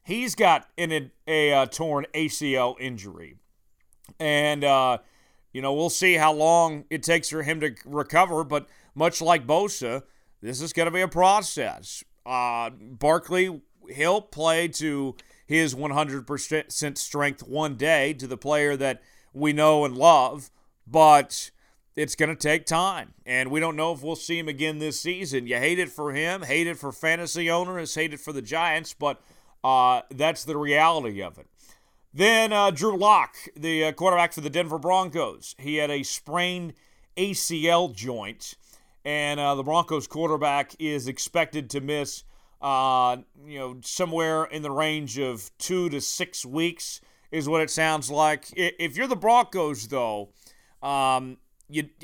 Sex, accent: male, American